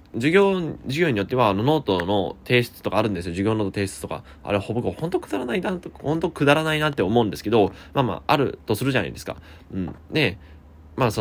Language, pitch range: Japanese, 95-140 Hz